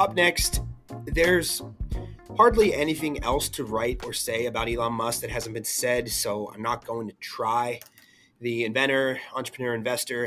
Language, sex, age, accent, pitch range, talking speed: English, male, 30-49, American, 115-155 Hz, 160 wpm